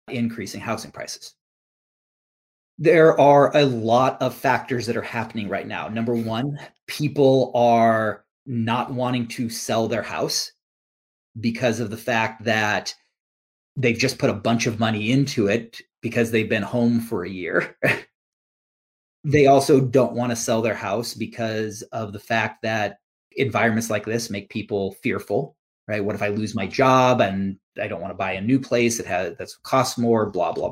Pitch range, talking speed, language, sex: 110-125 Hz, 170 wpm, English, male